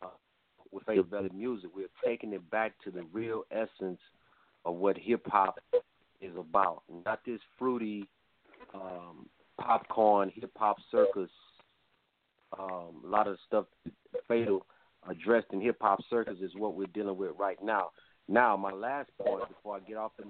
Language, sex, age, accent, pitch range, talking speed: English, male, 40-59, American, 100-120 Hz, 150 wpm